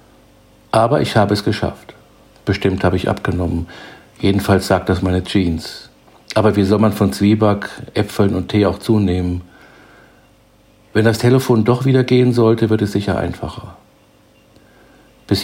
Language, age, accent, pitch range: German, 50-69, German, 90-110 Hz